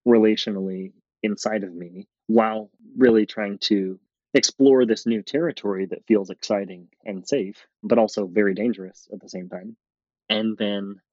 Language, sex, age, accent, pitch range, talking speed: English, male, 20-39, American, 100-120 Hz, 145 wpm